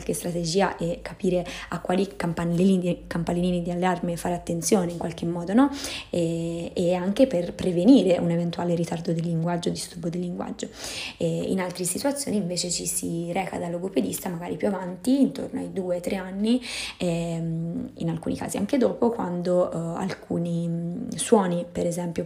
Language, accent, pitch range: Italian, native, 170-185 Hz